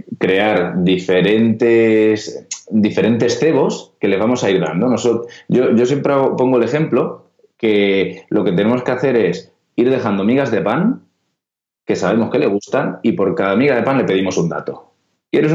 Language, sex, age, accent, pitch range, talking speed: Spanish, male, 20-39, Spanish, 90-140 Hz, 180 wpm